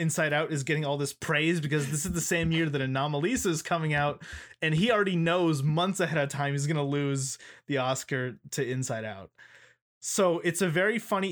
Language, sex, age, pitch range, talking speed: English, male, 20-39, 135-170 Hz, 210 wpm